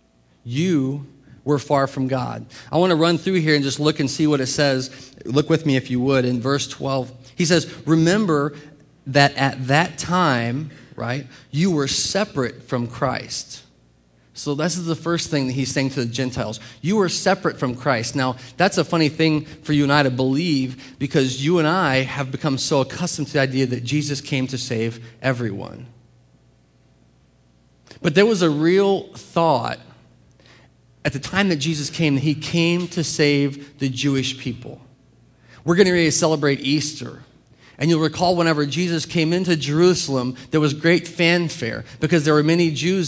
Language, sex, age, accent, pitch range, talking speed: English, male, 40-59, American, 125-160 Hz, 180 wpm